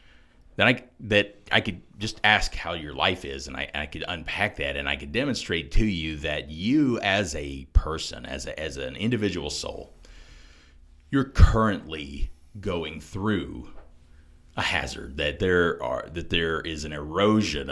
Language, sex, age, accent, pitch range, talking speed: English, male, 40-59, American, 75-95 Hz, 165 wpm